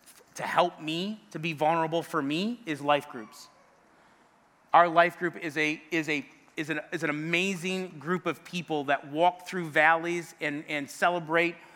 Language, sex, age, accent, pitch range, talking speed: English, male, 30-49, American, 145-175 Hz, 170 wpm